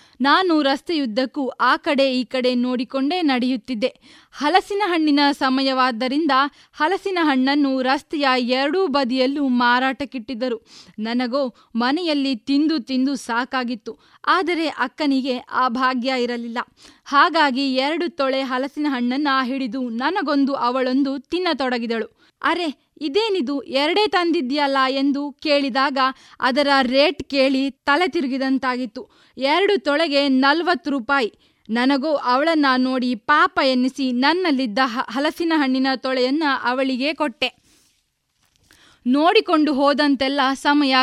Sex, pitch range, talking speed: female, 255-295 Hz, 95 wpm